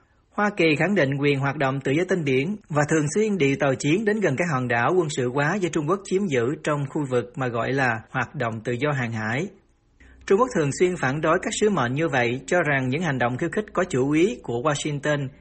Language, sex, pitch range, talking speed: Vietnamese, male, 130-175 Hz, 255 wpm